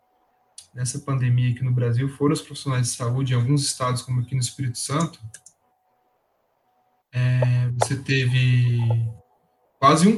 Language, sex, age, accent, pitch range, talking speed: Portuguese, male, 20-39, Brazilian, 125-150 Hz, 135 wpm